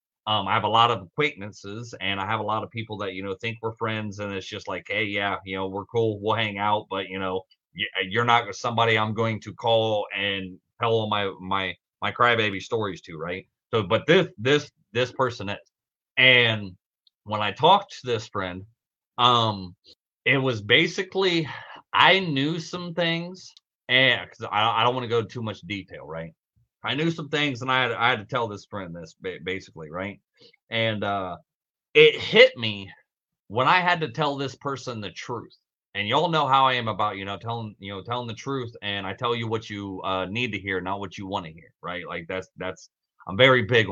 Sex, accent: male, American